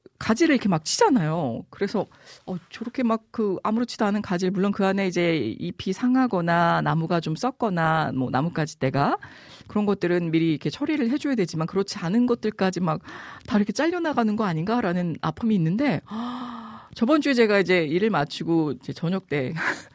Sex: female